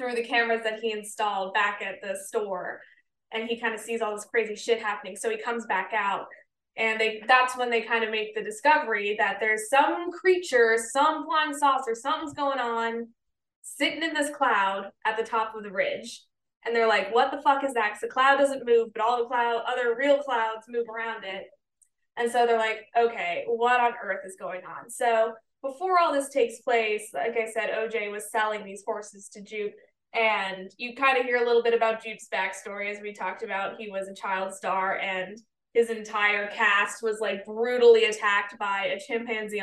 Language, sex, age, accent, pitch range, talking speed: English, female, 20-39, American, 210-255 Hz, 205 wpm